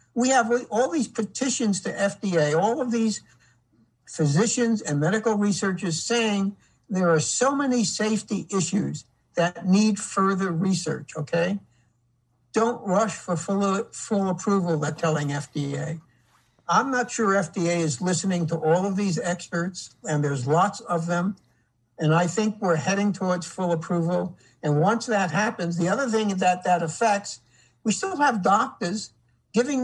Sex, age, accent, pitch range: male, 60-79, American, 165-220 Hz